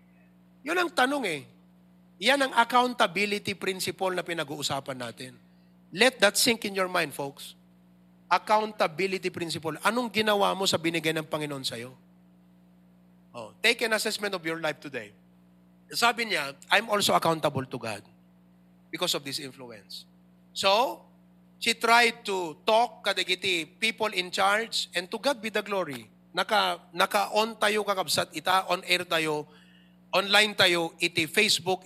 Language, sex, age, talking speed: English, male, 30-49, 145 wpm